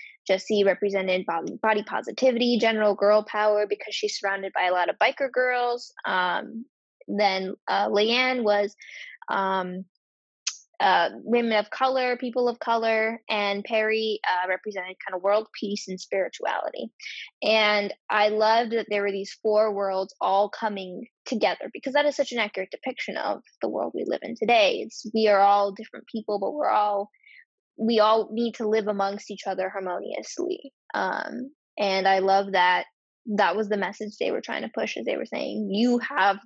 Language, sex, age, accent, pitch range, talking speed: English, female, 10-29, American, 200-250 Hz, 170 wpm